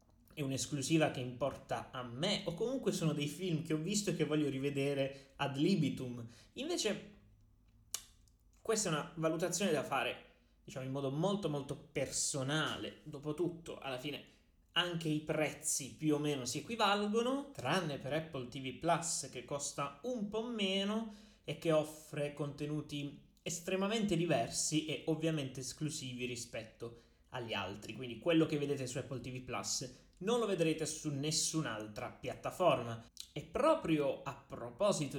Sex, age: male, 20-39